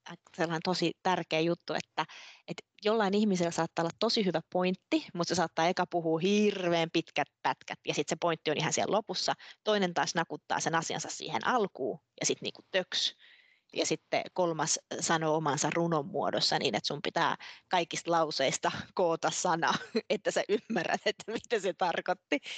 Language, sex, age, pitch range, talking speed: Finnish, female, 20-39, 165-210 Hz, 165 wpm